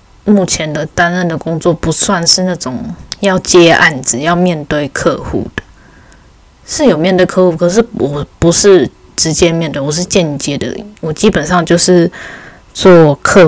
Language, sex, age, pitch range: Chinese, female, 10-29, 145-180 Hz